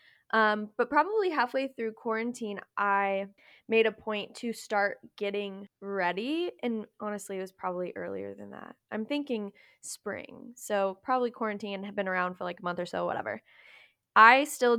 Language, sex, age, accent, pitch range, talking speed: English, female, 10-29, American, 195-230 Hz, 165 wpm